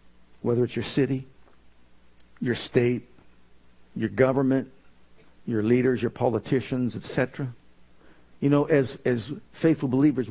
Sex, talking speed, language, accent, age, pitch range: male, 110 wpm, English, American, 50-69, 105-150 Hz